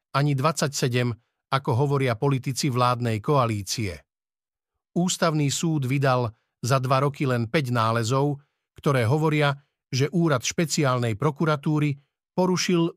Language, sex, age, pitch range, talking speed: Slovak, male, 50-69, 130-155 Hz, 105 wpm